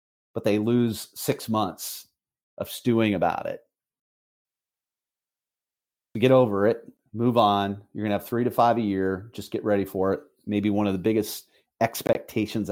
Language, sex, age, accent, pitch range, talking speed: English, male, 40-59, American, 105-125 Hz, 155 wpm